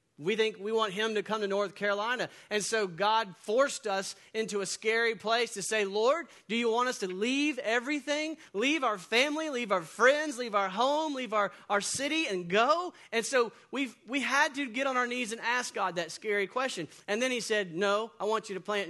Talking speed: 220 wpm